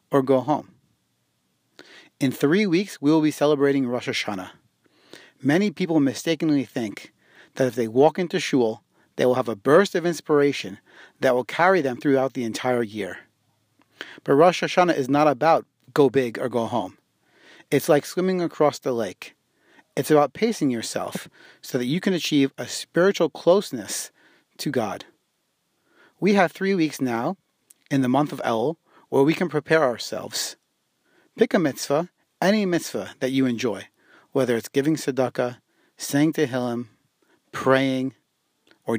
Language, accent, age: English, American, 30-49